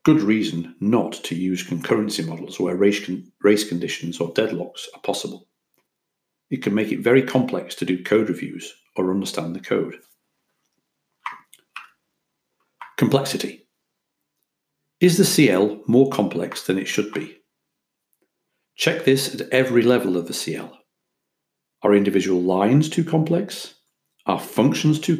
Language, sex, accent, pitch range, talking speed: English, male, British, 100-140 Hz, 130 wpm